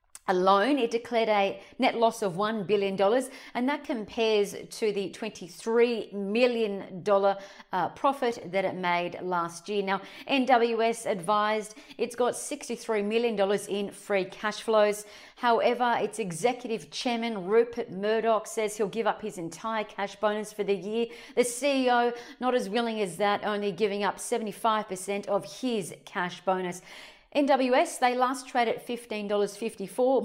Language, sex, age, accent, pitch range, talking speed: English, female, 40-59, Australian, 200-240 Hz, 140 wpm